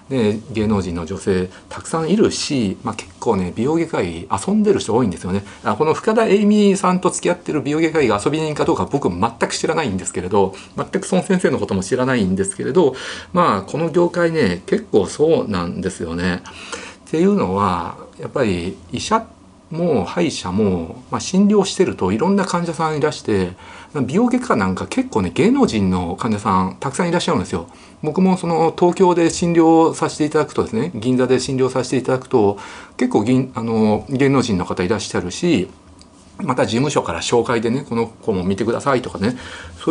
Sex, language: male, Japanese